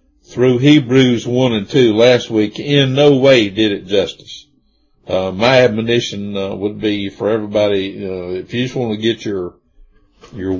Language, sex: English, male